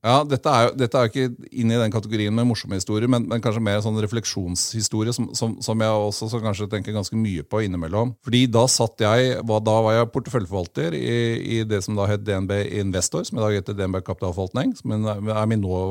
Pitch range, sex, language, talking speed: 105-120 Hz, male, English, 225 wpm